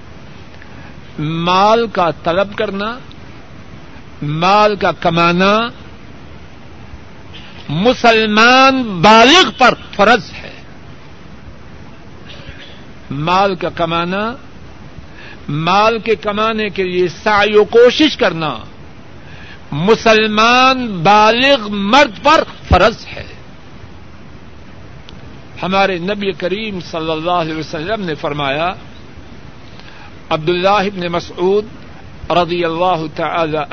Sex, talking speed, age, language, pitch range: male, 80 wpm, 60-79, Urdu, 160-215 Hz